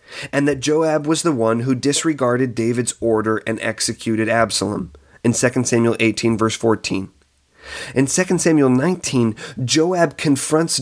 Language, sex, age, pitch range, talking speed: English, male, 30-49, 105-135 Hz, 140 wpm